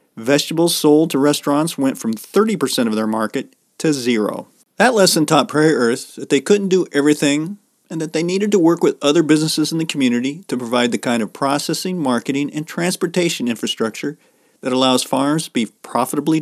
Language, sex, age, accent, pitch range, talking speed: English, male, 40-59, American, 130-170 Hz, 185 wpm